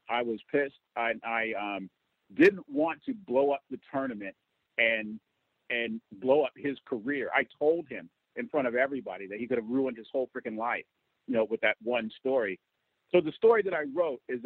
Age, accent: 50-69, American